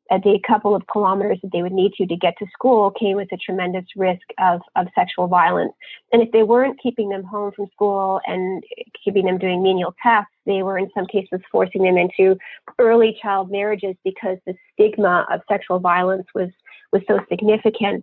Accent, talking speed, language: American, 195 wpm, English